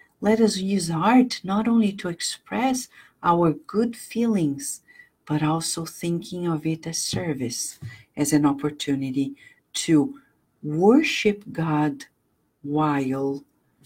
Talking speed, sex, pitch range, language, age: 110 wpm, female, 145-195 Hz, English, 50-69